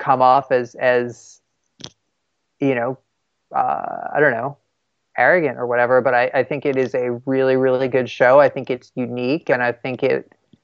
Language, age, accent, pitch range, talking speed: English, 30-49, American, 125-140 Hz, 180 wpm